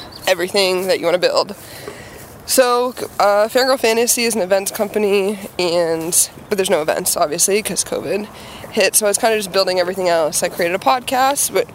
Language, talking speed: English, 185 wpm